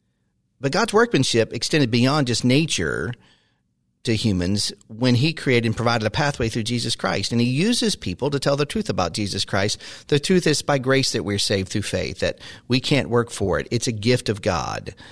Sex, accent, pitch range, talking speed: male, American, 100-140 Hz, 205 wpm